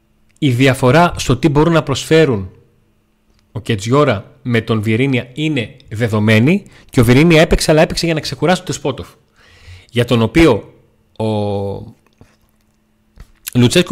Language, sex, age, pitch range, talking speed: Greek, male, 30-49, 105-140 Hz, 130 wpm